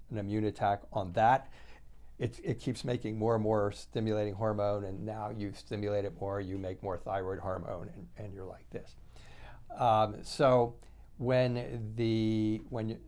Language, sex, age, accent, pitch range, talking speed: English, male, 50-69, American, 100-120 Hz, 160 wpm